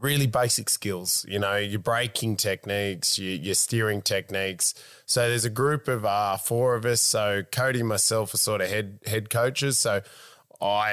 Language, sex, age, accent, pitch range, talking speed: English, male, 20-39, Australian, 105-125 Hz, 180 wpm